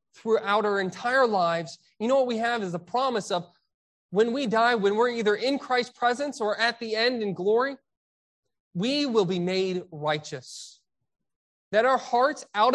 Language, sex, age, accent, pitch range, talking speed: English, male, 30-49, American, 175-225 Hz, 175 wpm